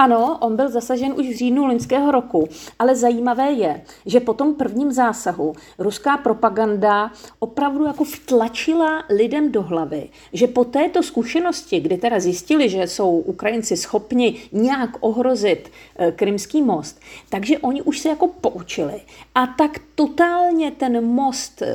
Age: 40-59